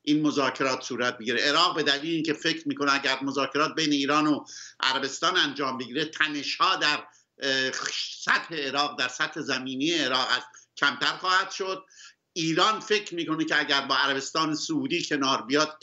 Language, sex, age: Persian, male, 60-79